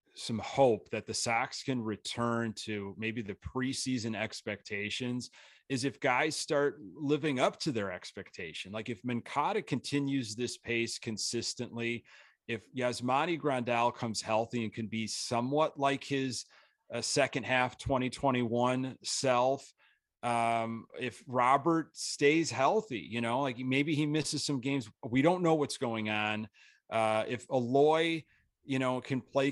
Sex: male